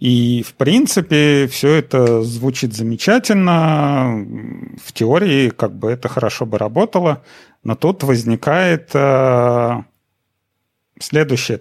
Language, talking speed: Russian, 90 wpm